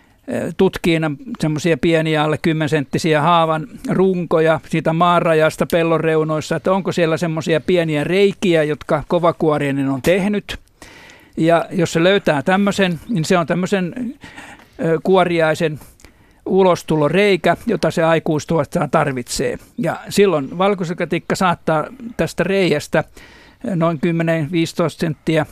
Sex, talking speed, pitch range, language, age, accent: male, 105 wpm, 155-185 Hz, Finnish, 60-79, native